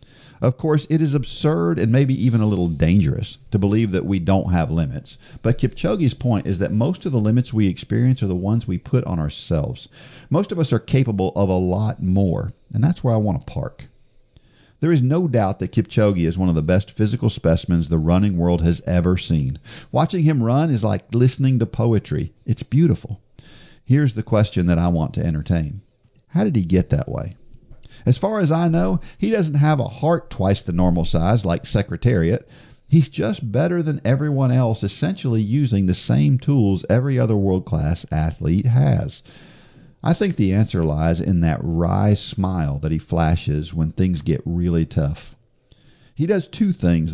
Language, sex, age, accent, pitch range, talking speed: English, male, 50-69, American, 90-135 Hz, 190 wpm